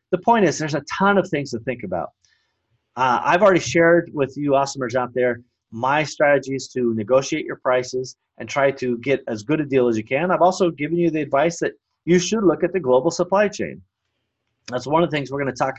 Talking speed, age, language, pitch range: 230 wpm, 30-49, English, 120-165 Hz